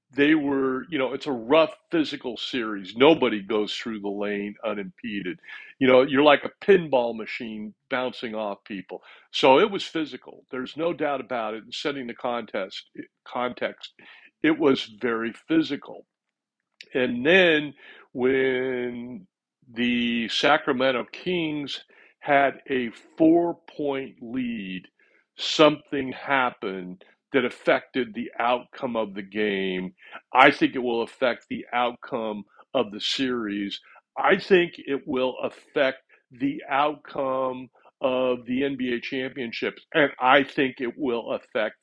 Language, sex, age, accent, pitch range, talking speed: English, male, 60-79, American, 110-145 Hz, 130 wpm